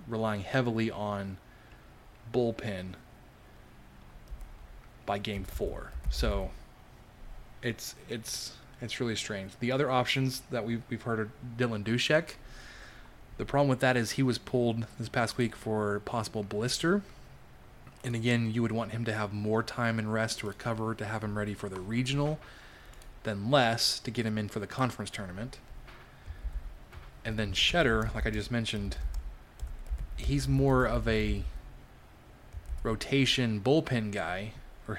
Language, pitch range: English, 105-125 Hz